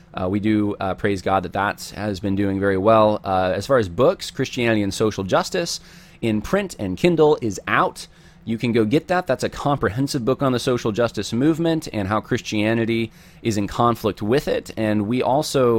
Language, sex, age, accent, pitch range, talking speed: English, male, 30-49, American, 95-125 Hz, 200 wpm